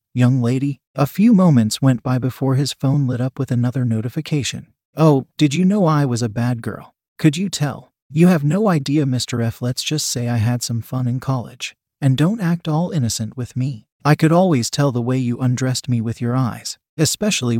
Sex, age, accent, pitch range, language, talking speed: male, 40-59, American, 120-150 Hz, English, 210 wpm